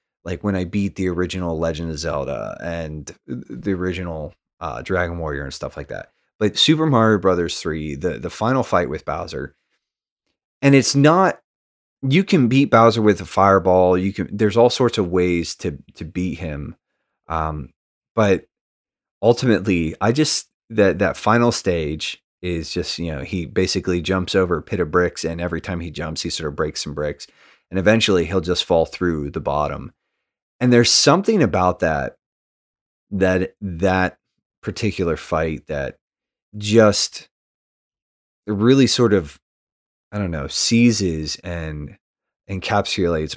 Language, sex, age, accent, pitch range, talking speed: English, male, 30-49, American, 80-110 Hz, 155 wpm